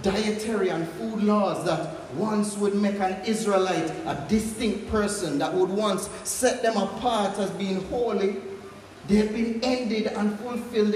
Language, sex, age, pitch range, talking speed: English, male, 40-59, 195-235 Hz, 150 wpm